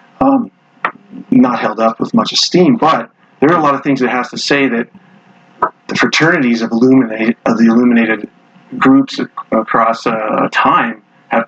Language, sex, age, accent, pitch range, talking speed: English, male, 40-59, American, 120-170 Hz, 160 wpm